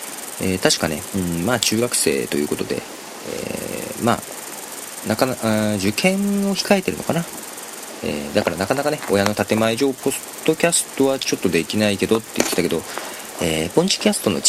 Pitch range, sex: 85-120 Hz, male